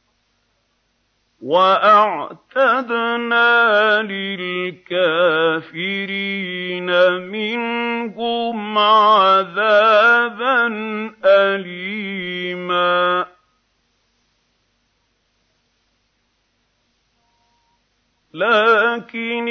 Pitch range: 170-195 Hz